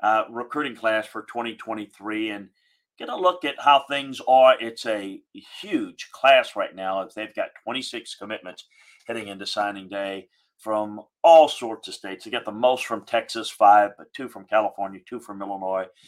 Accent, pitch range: American, 100-120 Hz